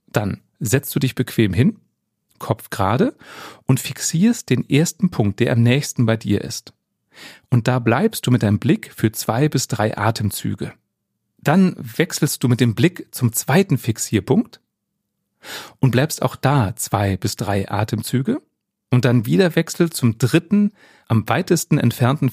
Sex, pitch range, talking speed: male, 115-150 Hz, 155 wpm